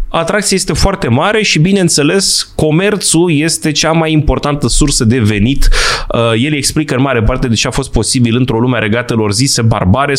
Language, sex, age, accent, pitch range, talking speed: Romanian, male, 20-39, native, 120-195 Hz, 175 wpm